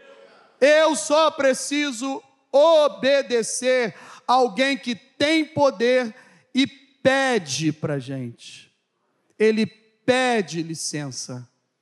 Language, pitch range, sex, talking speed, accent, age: Portuguese, 255-325 Hz, male, 80 wpm, Brazilian, 40-59